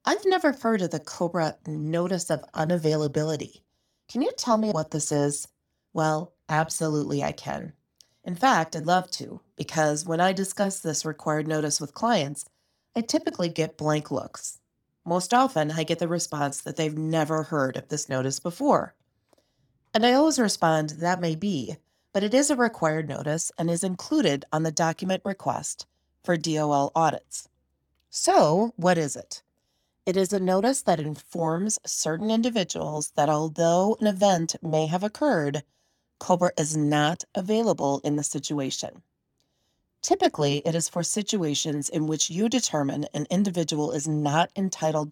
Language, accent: English, American